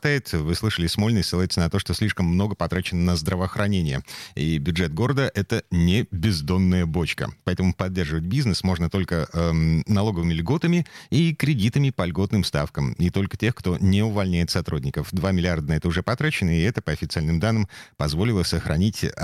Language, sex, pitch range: Russian, male, 85-105 Hz